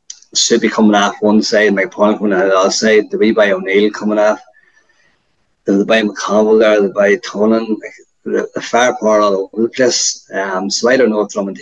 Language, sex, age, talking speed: English, male, 20-39, 205 wpm